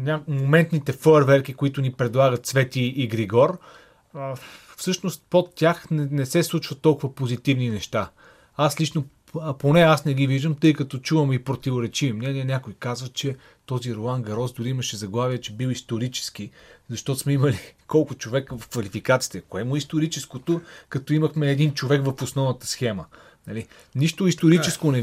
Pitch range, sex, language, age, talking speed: 125-155 Hz, male, Bulgarian, 30-49, 155 wpm